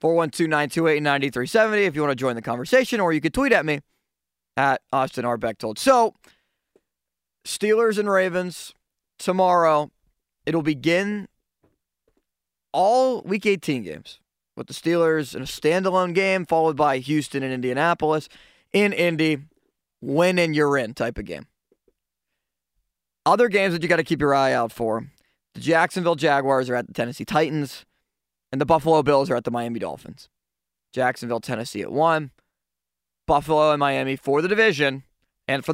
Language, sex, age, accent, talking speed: English, male, 20-39, American, 150 wpm